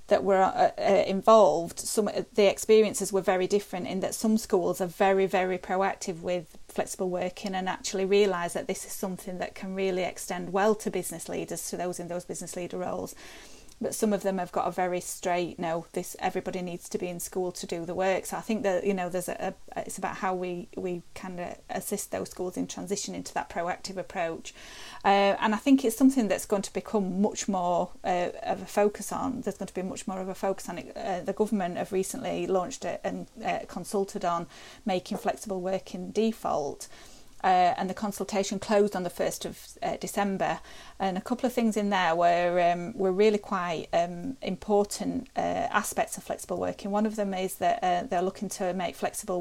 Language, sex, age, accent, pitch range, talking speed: English, female, 30-49, British, 180-205 Hz, 210 wpm